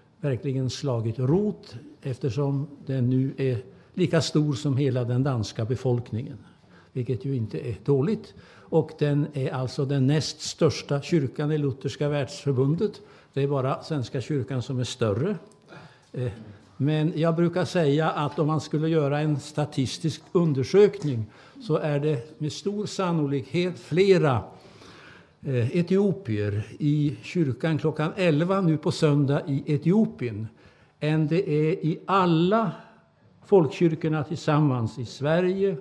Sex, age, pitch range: male, 60-79, 125-155 Hz